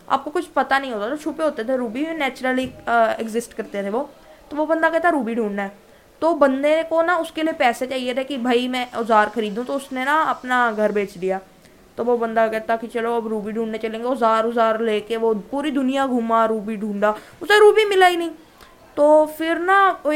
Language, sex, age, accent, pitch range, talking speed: Hindi, female, 20-39, native, 230-315 Hz, 215 wpm